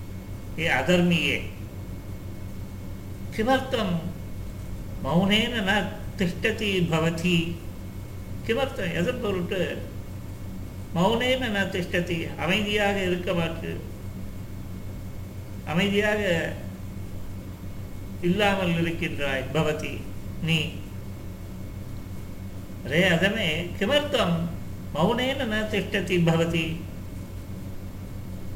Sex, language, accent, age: male, Tamil, native, 50-69